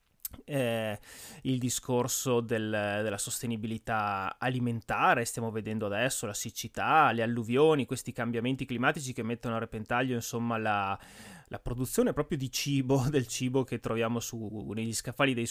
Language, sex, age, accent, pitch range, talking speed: Italian, male, 20-39, native, 115-145 Hz, 140 wpm